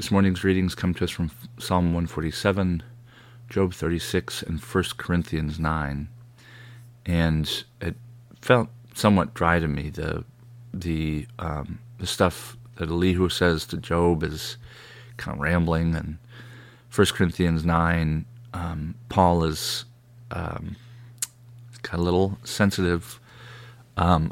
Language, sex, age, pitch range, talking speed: English, male, 40-59, 85-120 Hz, 130 wpm